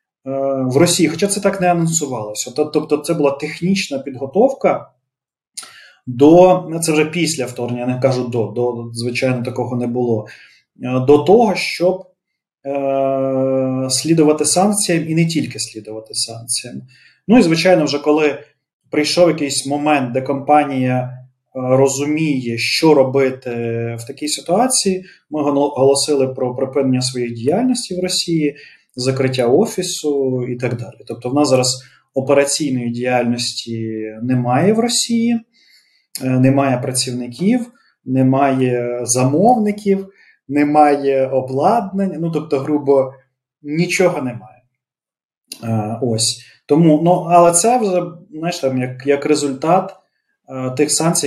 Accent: native